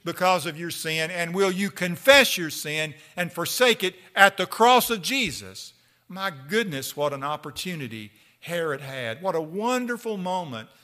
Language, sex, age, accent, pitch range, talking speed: English, male, 50-69, American, 135-200 Hz, 160 wpm